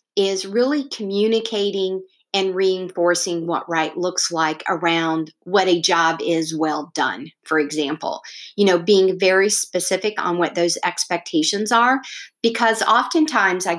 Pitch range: 170-215 Hz